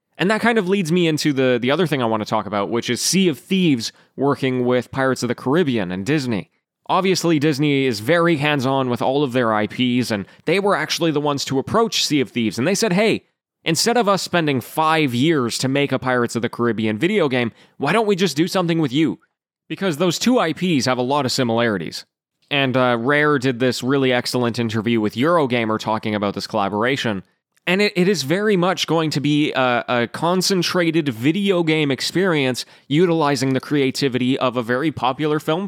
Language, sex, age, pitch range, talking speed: English, male, 20-39, 125-170 Hz, 205 wpm